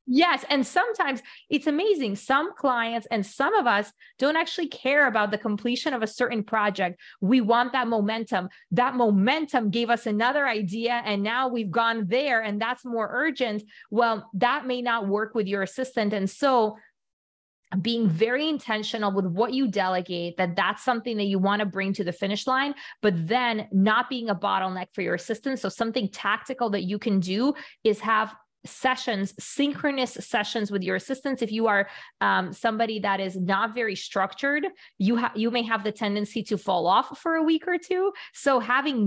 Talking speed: 185 wpm